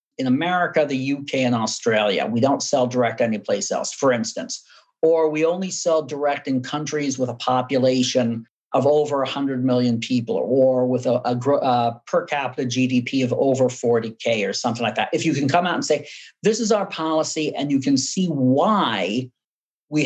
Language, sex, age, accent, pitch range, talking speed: English, male, 50-69, American, 130-165 Hz, 180 wpm